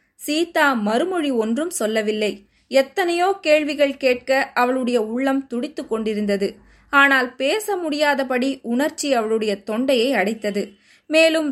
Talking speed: 100 wpm